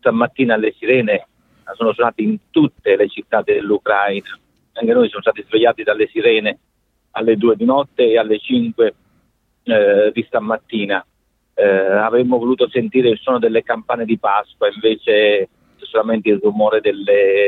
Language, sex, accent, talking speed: Italian, male, native, 145 wpm